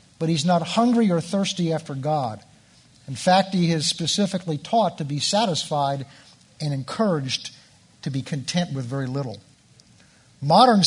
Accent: American